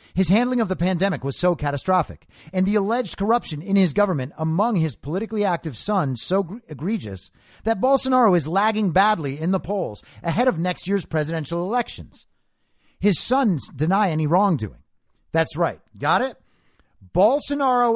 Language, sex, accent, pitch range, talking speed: English, male, American, 155-220 Hz, 155 wpm